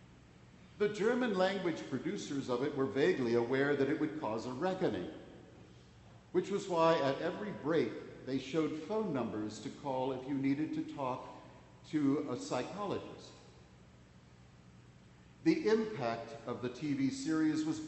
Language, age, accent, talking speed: English, 60-79, American, 140 wpm